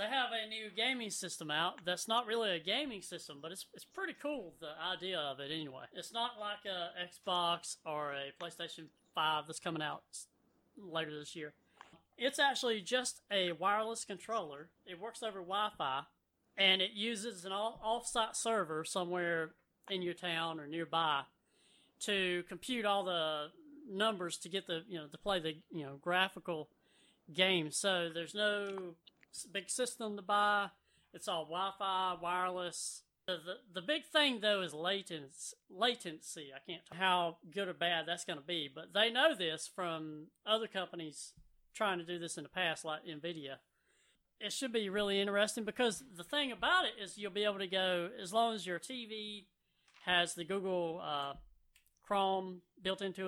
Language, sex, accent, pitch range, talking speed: English, female, American, 165-210 Hz, 170 wpm